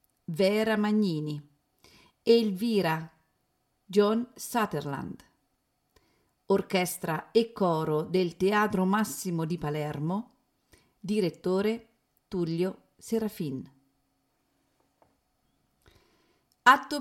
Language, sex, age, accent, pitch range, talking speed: Italian, female, 40-59, native, 155-210 Hz, 60 wpm